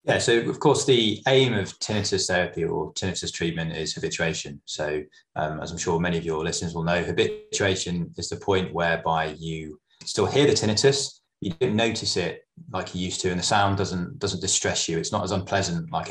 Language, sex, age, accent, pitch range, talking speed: English, male, 20-39, British, 85-100 Hz, 205 wpm